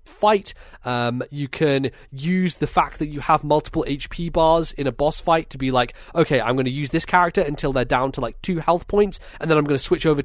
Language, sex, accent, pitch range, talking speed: English, male, British, 115-145 Hz, 245 wpm